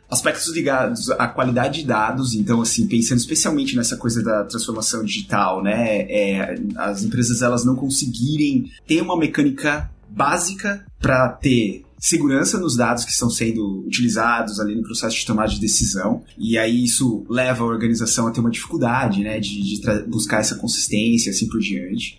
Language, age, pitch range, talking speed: Portuguese, 20-39, 115-135 Hz, 170 wpm